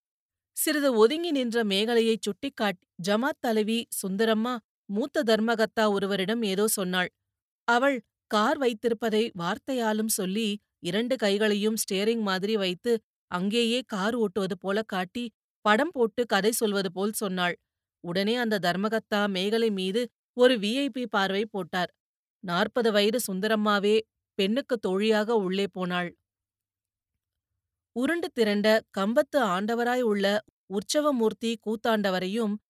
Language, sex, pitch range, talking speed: Tamil, female, 195-230 Hz, 105 wpm